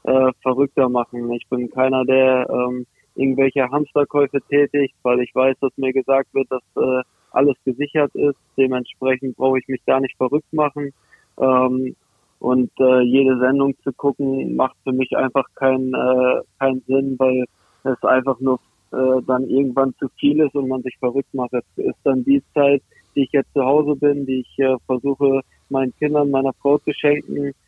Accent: German